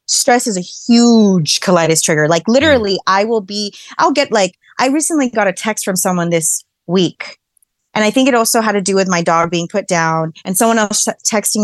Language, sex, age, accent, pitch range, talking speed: English, female, 20-39, American, 175-230 Hz, 210 wpm